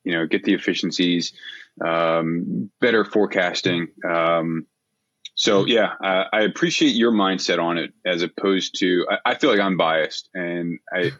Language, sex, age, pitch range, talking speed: English, male, 20-39, 85-100 Hz, 155 wpm